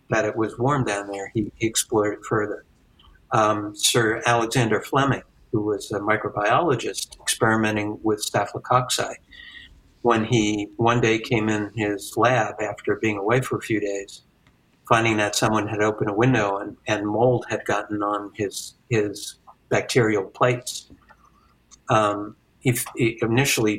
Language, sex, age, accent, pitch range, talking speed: English, male, 60-79, American, 105-120 Hz, 145 wpm